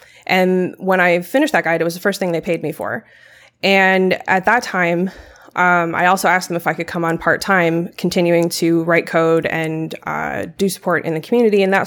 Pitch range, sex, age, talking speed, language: 165-185 Hz, female, 20-39, 220 wpm, English